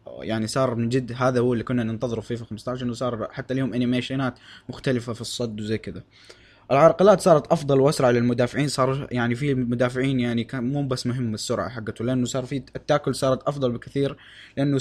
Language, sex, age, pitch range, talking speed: Arabic, male, 20-39, 115-150 Hz, 180 wpm